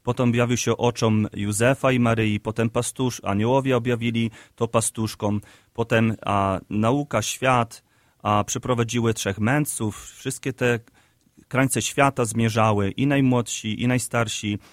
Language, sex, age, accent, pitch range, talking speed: Polish, male, 30-49, native, 110-130 Hz, 120 wpm